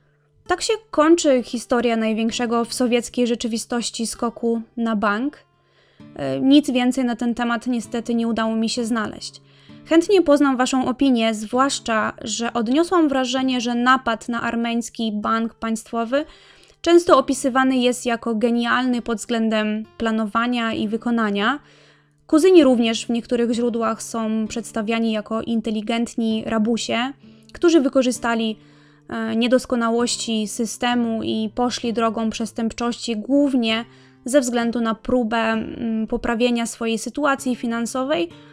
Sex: female